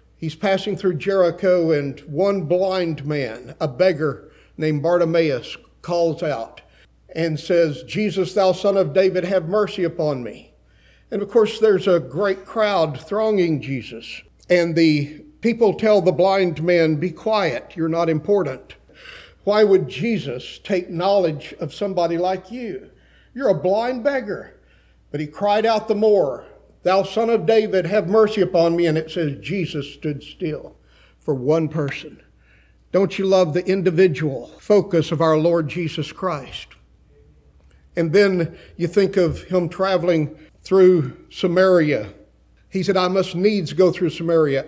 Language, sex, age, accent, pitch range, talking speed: English, male, 50-69, American, 155-190 Hz, 150 wpm